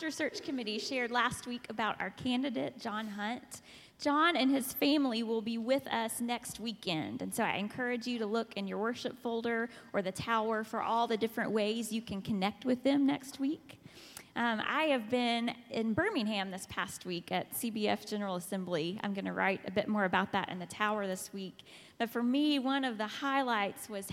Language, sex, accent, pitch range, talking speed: English, female, American, 200-250 Hz, 200 wpm